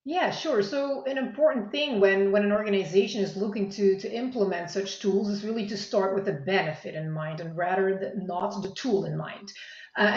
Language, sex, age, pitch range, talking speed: English, female, 30-49, 190-225 Hz, 200 wpm